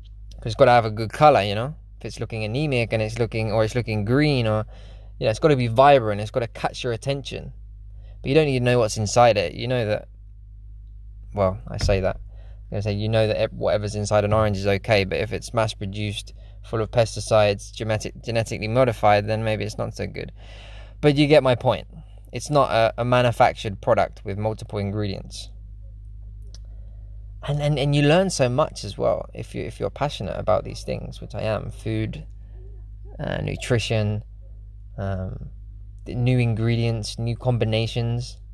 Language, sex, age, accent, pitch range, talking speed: English, male, 20-39, British, 105-125 Hz, 185 wpm